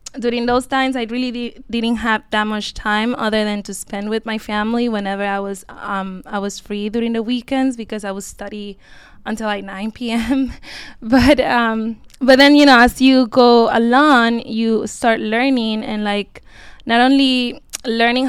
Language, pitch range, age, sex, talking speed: English, 205-245 Hz, 20-39, female, 180 wpm